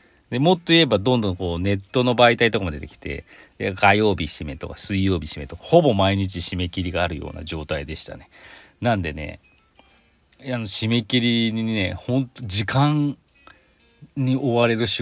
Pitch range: 90-120 Hz